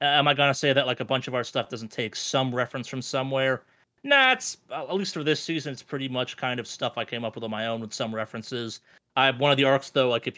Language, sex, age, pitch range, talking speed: English, male, 30-49, 115-135 Hz, 290 wpm